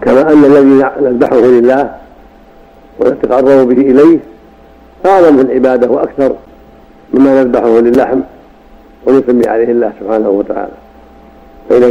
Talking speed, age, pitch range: 100 wpm, 70-89, 115-130 Hz